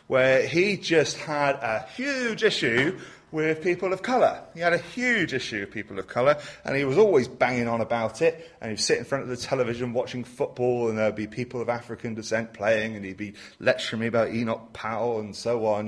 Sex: male